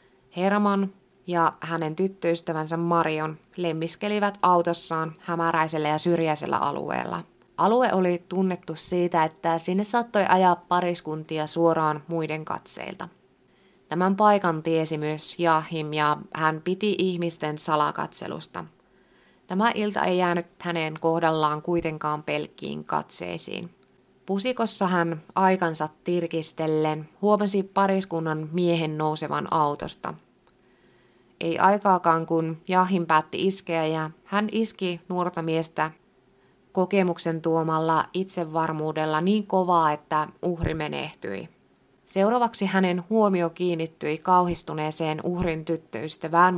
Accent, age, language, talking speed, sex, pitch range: native, 20-39, Finnish, 100 wpm, female, 155-185 Hz